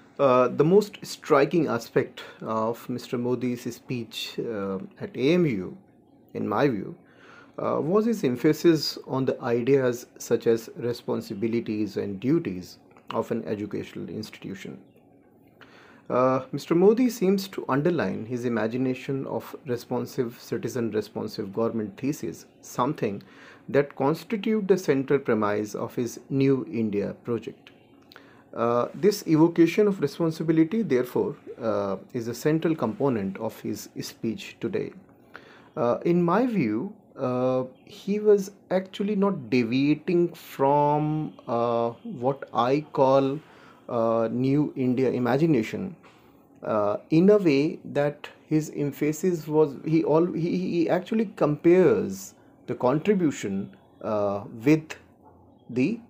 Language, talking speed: English, 115 wpm